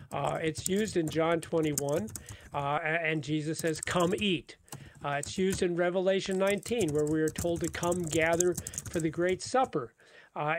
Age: 40-59